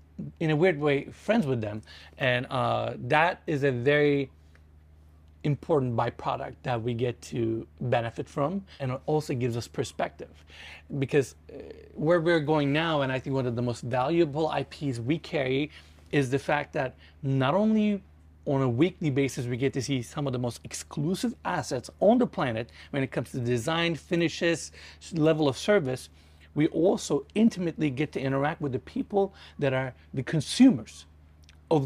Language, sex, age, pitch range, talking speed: English, male, 30-49, 115-160 Hz, 170 wpm